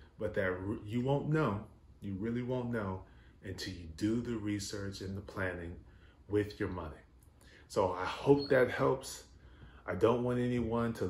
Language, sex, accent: English, male, American